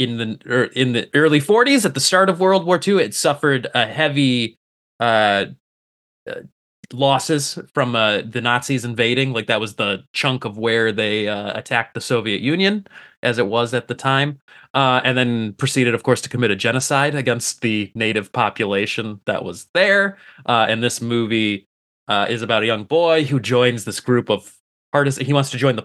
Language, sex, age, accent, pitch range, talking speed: English, male, 20-39, American, 105-135 Hz, 190 wpm